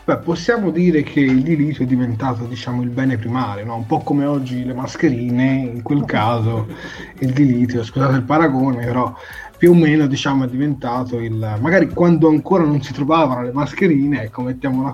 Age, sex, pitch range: 20-39, male, 120-155 Hz